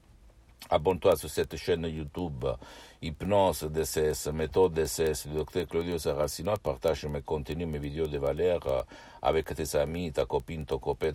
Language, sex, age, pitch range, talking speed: Italian, male, 60-79, 75-85 Hz, 145 wpm